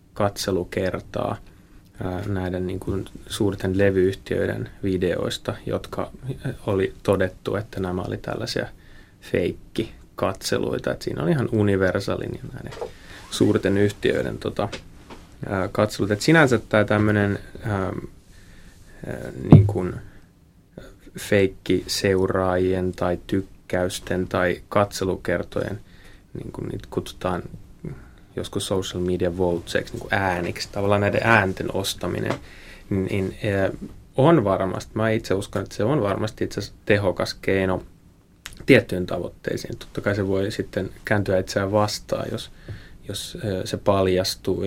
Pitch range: 95-105 Hz